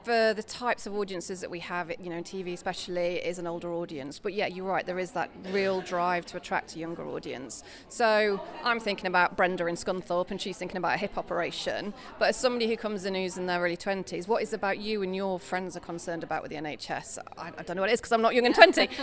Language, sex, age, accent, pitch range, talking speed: English, female, 30-49, British, 180-215 Hz, 255 wpm